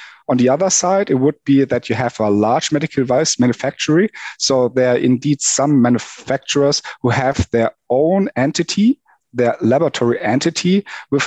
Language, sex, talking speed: English, male, 160 wpm